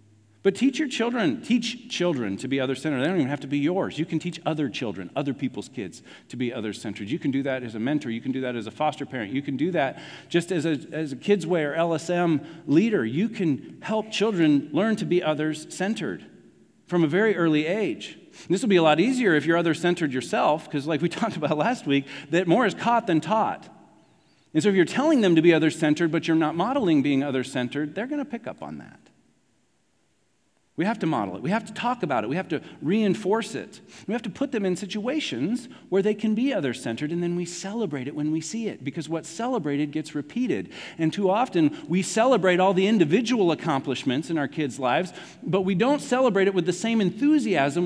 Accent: American